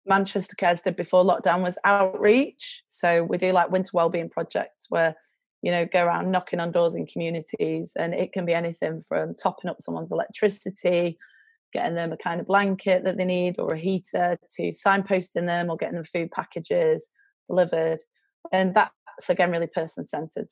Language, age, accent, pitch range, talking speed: English, 30-49, British, 165-195 Hz, 175 wpm